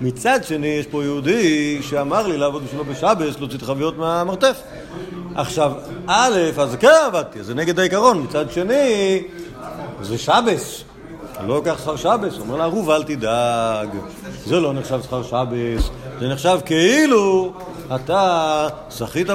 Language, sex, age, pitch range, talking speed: Hebrew, male, 50-69, 135-185 Hz, 145 wpm